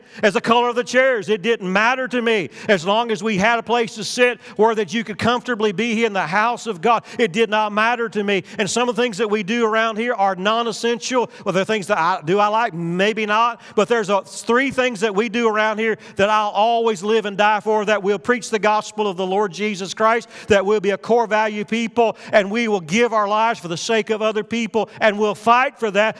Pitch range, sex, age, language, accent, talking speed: 195-230 Hz, male, 40-59, English, American, 255 wpm